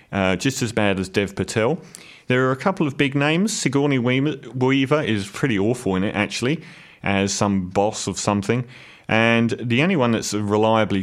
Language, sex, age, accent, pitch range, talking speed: English, male, 30-49, British, 95-115 Hz, 180 wpm